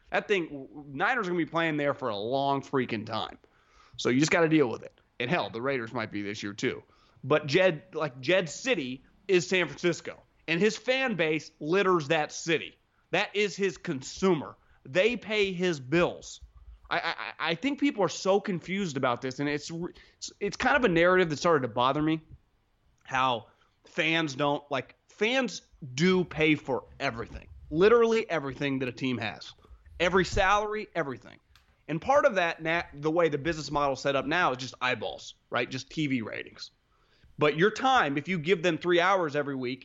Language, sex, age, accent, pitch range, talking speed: English, male, 30-49, American, 140-185 Hz, 195 wpm